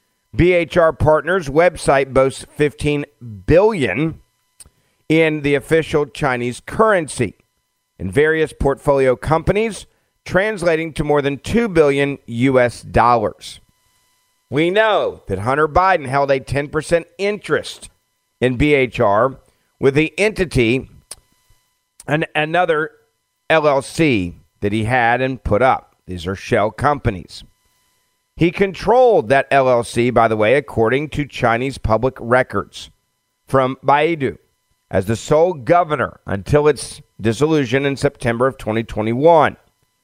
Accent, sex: American, male